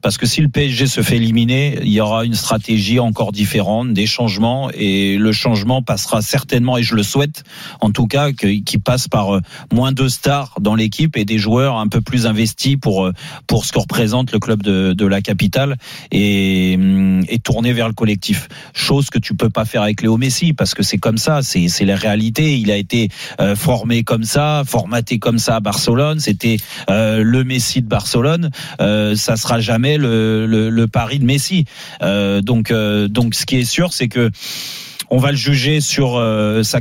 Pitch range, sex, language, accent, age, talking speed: 110-135 Hz, male, French, French, 40-59, 200 wpm